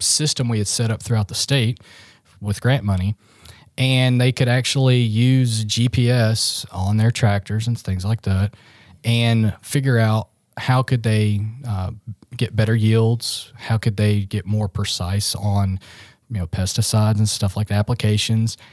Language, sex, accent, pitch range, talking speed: English, male, American, 105-120 Hz, 155 wpm